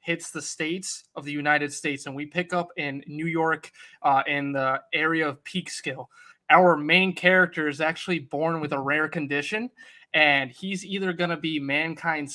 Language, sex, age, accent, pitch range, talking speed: English, male, 20-39, American, 145-180 Hz, 185 wpm